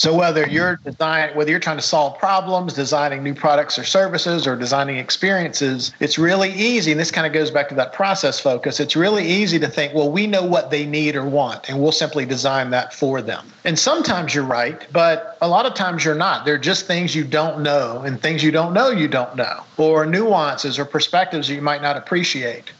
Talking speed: 220 wpm